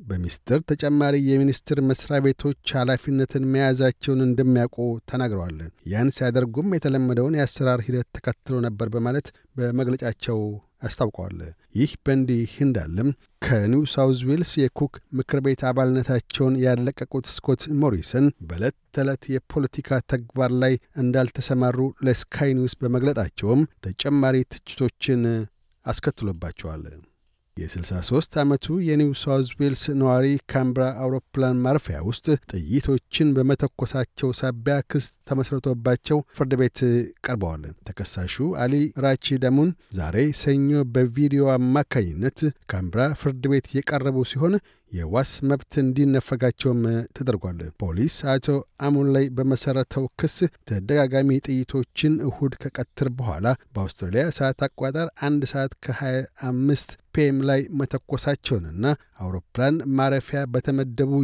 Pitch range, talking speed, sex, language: 120-140 Hz, 95 wpm, male, Amharic